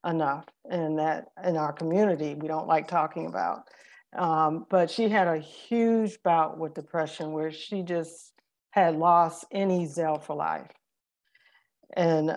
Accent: American